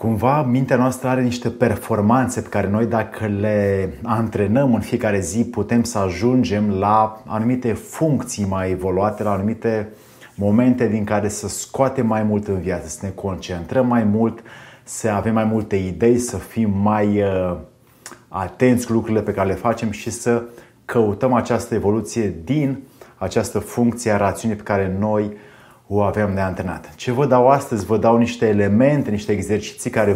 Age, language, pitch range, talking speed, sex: 30-49, Romanian, 105-125 Hz, 165 wpm, male